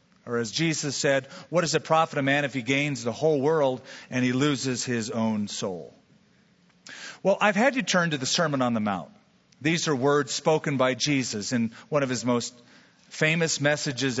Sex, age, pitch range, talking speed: male, 40-59, 135-185 Hz, 195 wpm